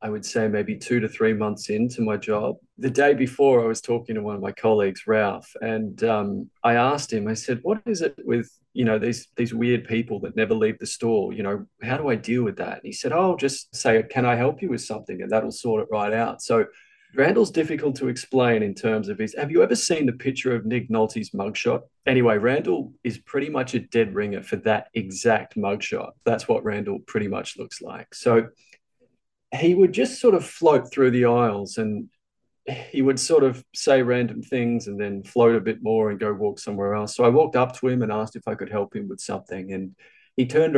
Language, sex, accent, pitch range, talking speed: English, male, Australian, 110-130 Hz, 230 wpm